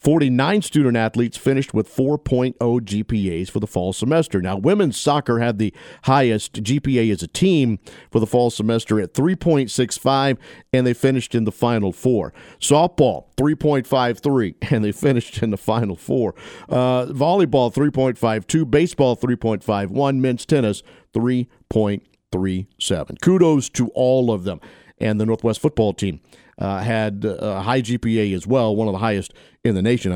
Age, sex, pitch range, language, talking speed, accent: 50-69, male, 105-130 Hz, English, 145 wpm, American